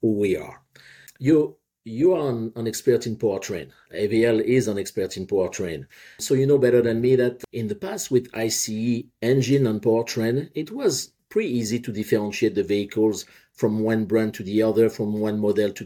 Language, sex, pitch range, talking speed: English, male, 105-130 Hz, 185 wpm